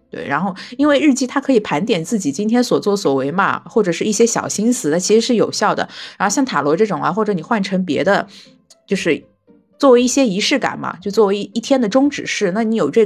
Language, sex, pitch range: Chinese, female, 165-230 Hz